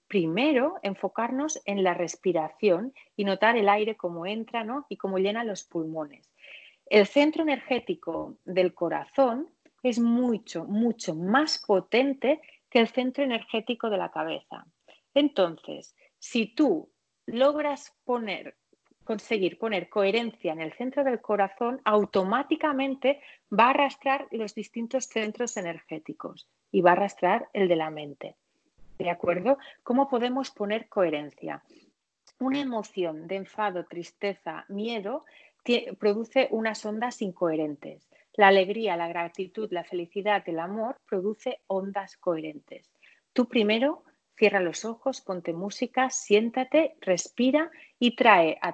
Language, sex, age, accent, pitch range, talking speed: Spanish, female, 40-59, Spanish, 190-255 Hz, 125 wpm